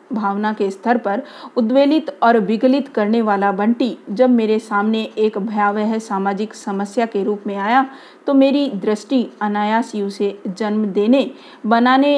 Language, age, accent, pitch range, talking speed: Hindi, 40-59, native, 205-250 Hz, 145 wpm